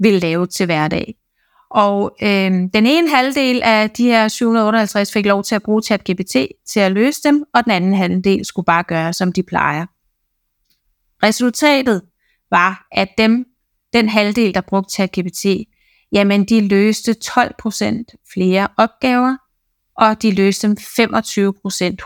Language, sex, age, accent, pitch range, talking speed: Danish, female, 30-49, native, 195-235 Hz, 145 wpm